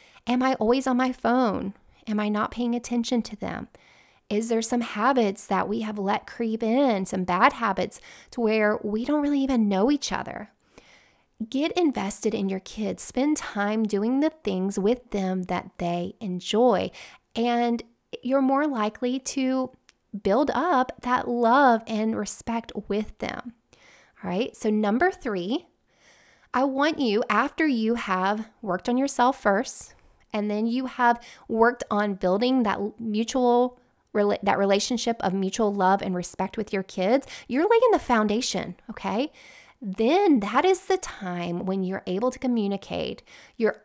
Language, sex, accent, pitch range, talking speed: English, female, American, 205-255 Hz, 155 wpm